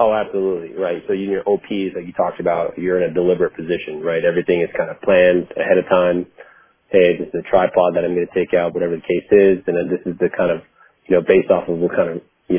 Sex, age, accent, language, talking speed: male, 30-49, American, English, 270 wpm